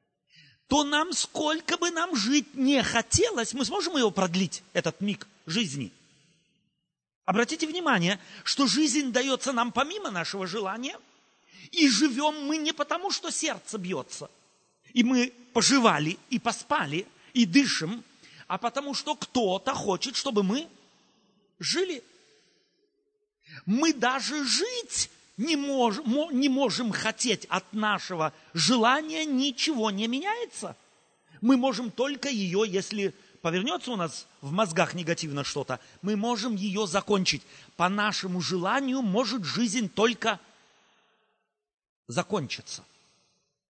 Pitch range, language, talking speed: 190-280 Hz, Russian, 115 wpm